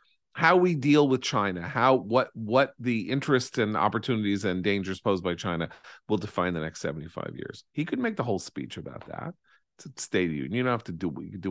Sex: male